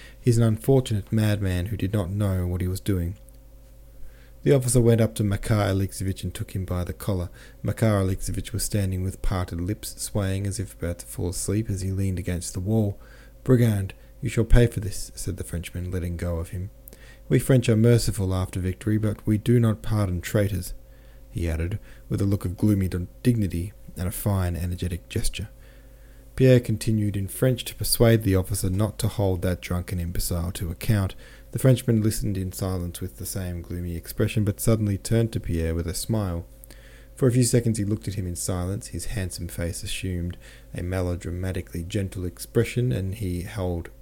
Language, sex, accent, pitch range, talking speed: English, male, Australian, 90-115 Hz, 190 wpm